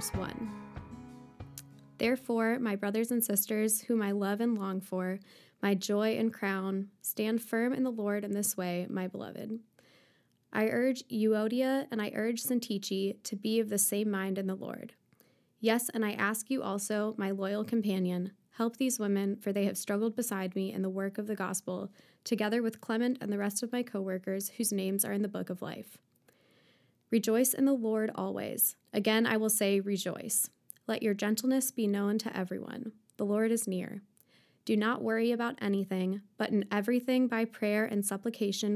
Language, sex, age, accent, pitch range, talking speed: English, female, 20-39, American, 195-225 Hz, 180 wpm